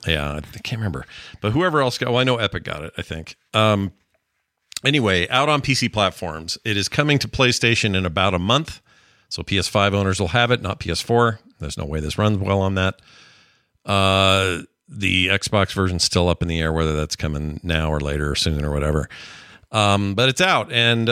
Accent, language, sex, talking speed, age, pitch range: American, English, male, 200 wpm, 40-59, 95-125 Hz